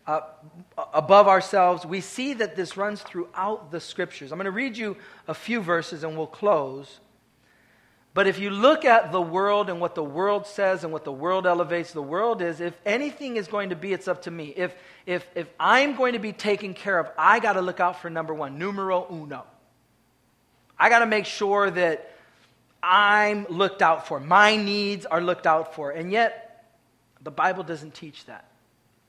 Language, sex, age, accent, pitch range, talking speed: English, male, 40-59, American, 155-205 Hz, 195 wpm